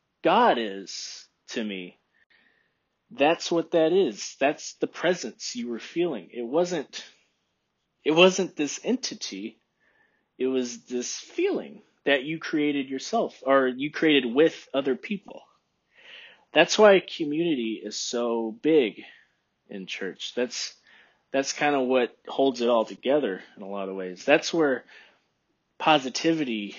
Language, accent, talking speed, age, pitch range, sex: English, American, 130 wpm, 30-49, 115-155 Hz, male